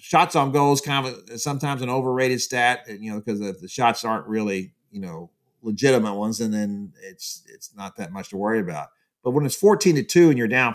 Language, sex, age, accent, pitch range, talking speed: English, male, 50-69, American, 105-140 Hz, 220 wpm